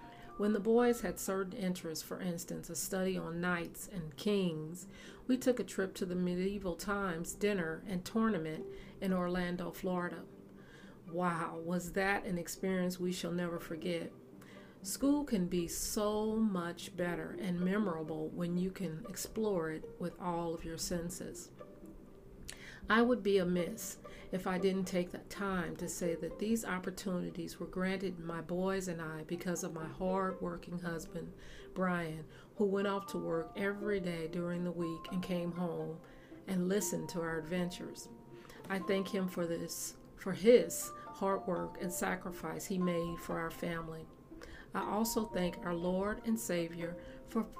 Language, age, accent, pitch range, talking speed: English, 40-59, American, 170-195 Hz, 160 wpm